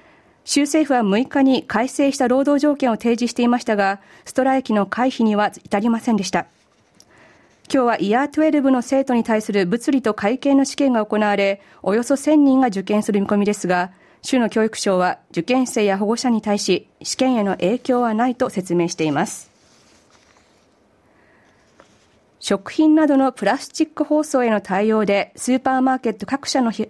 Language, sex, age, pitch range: Japanese, female, 40-59, 200-265 Hz